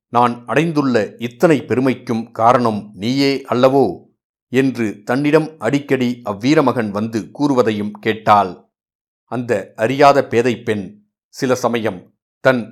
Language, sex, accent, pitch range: Tamil, male, native, 105-130 Hz